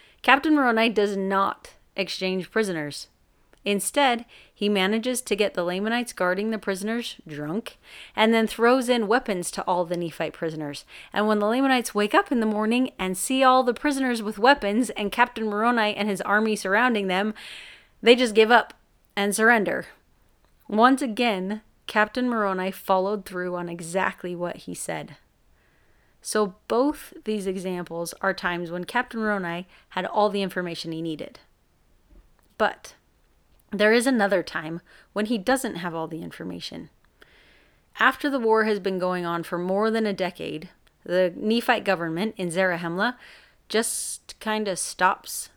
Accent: American